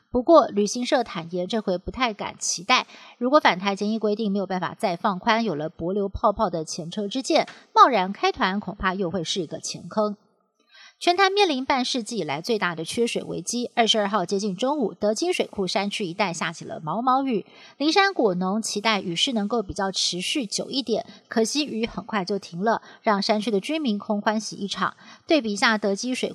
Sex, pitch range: female, 190-240 Hz